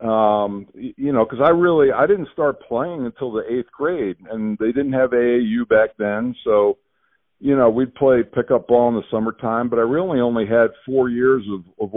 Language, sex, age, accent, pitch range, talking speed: English, male, 50-69, American, 100-125 Hz, 200 wpm